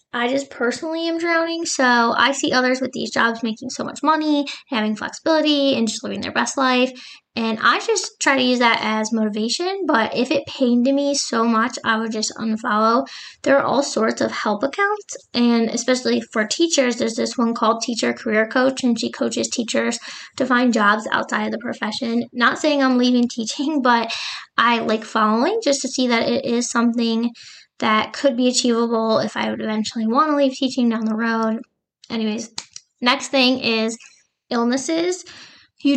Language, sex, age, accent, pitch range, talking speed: English, female, 10-29, American, 225-275 Hz, 185 wpm